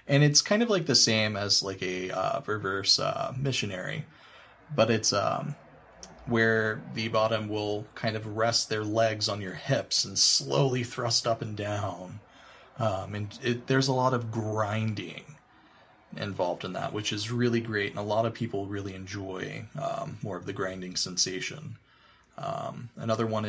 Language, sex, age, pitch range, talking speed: English, male, 20-39, 105-130 Hz, 170 wpm